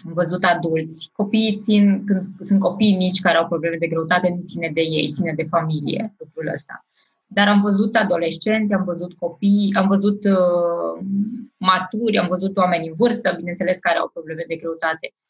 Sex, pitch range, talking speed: female, 175-215 Hz, 175 wpm